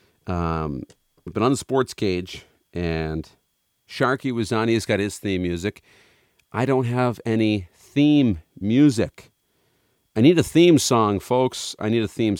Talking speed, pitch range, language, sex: 150 wpm, 90-120 Hz, English, male